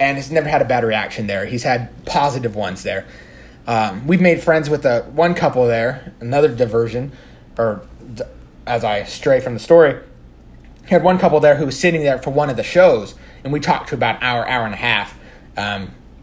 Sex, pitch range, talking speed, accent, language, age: male, 120-195 Hz, 210 wpm, American, English, 30-49